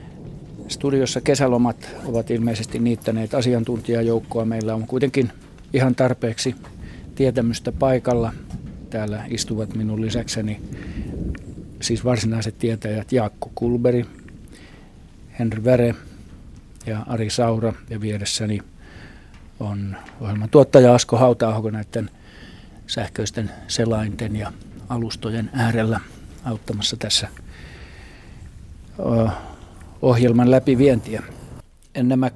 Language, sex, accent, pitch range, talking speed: Finnish, male, native, 110-125 Hz, 85 wpm